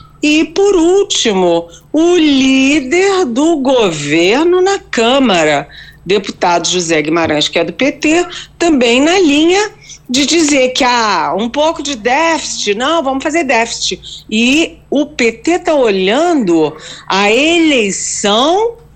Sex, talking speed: female, 120 wpm